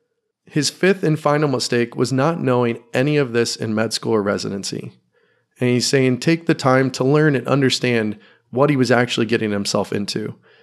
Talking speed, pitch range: 185 wpm, 115-145 Hz